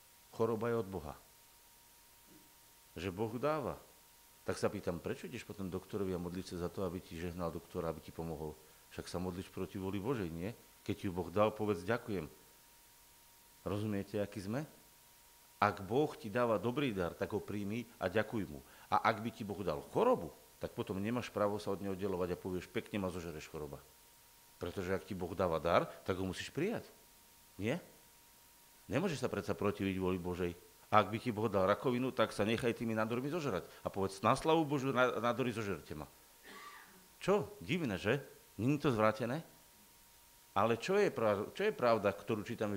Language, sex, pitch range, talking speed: Slovak, male, 95-125 Hz, 175 wpm